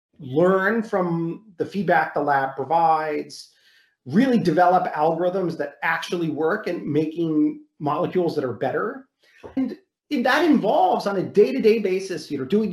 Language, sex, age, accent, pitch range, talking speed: English, male, 40-59, American, 150-200 Hz, 135 wpm